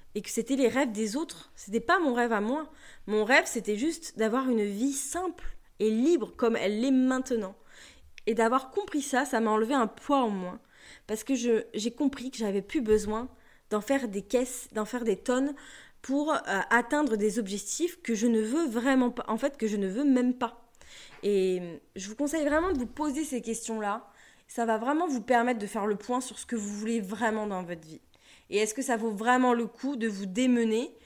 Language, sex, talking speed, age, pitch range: French, female, 220 wpm, 20-39, 210-265 Hz